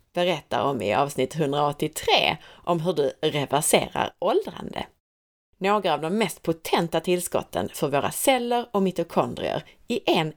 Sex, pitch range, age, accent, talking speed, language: female, 145-220 Hz, 30-49, native, 135 wpm, Swedish